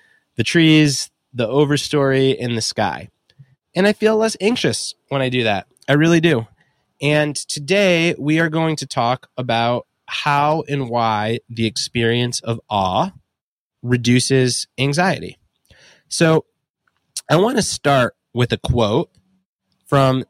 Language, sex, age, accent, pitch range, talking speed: English, male, 20-39, American, 125-160 Hz, 130 wpm